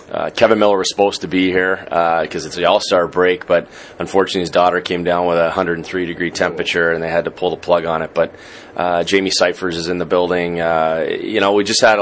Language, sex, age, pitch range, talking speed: English, male, 30-49, 85-95 Hz, 235 wpm